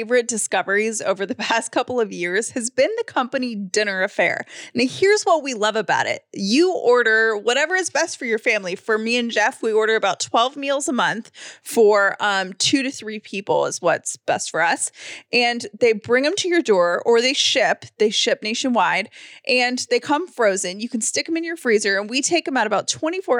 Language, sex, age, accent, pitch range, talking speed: English, female, 20-39, American, 210-280 Hz, 215 wpm